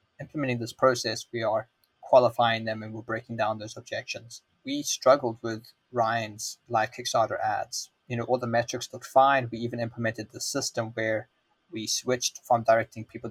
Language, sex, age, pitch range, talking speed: English, male, 20-39, 110-125 Hz, 170 wpm